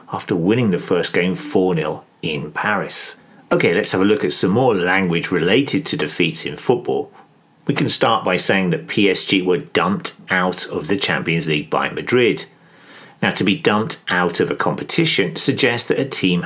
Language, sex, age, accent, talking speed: English, male, 40-59, British, 180 wpm